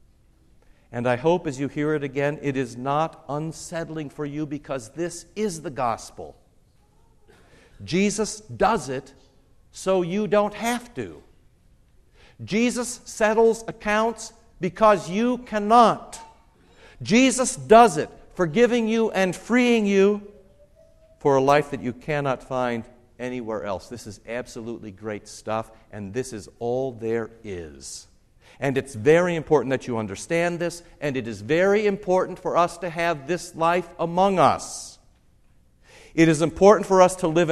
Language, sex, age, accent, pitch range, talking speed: English, male, 60-79, American, 125-200 Hz, 140 wpm